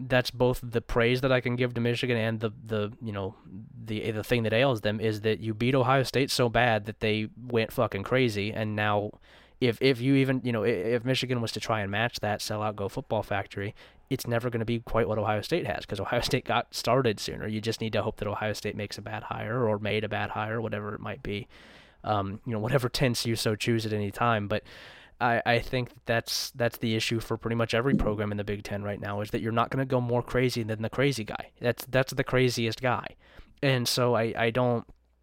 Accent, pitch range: American, 105-120 Hz